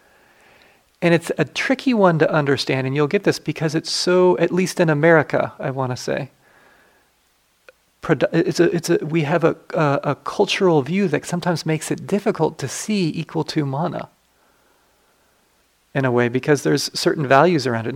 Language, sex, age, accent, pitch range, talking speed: English, male, 40-59, American, 135-170 Hz, 170 wpm